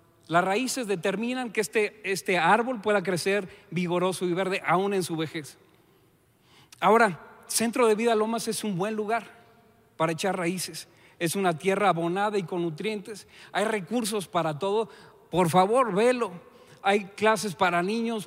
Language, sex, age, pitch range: Spanish, male, 40-59, 180-220 Hz